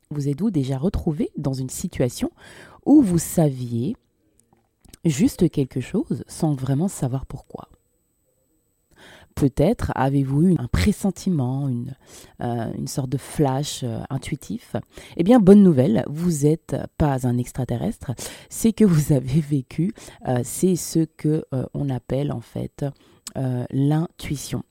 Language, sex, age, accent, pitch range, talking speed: French, female, 20-39, French, 140-195 Hz, 135 wpm